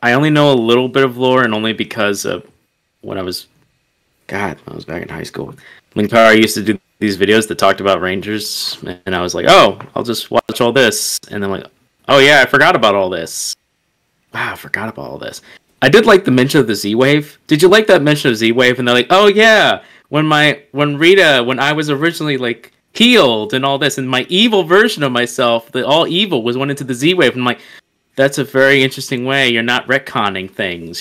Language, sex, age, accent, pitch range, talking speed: English, male, 20-39, American, 105-145 Hz, 230 wpm